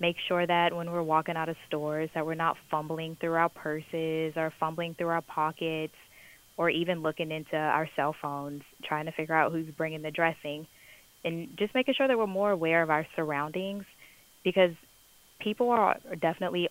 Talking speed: 185 wpm